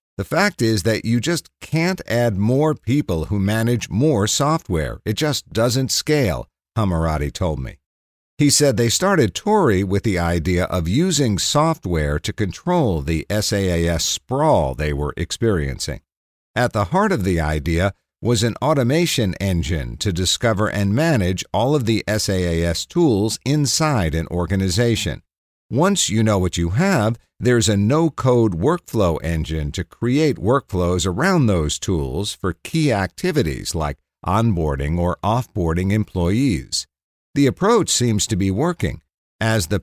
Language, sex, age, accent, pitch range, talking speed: English, male, 50-69, American, 85-120 Hz, 145 wpm